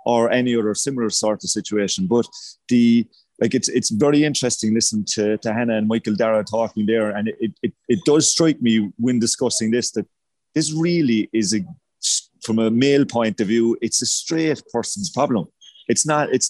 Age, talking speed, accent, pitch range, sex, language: 30-49, 190 wpm, British, 110-140 Hz, male, English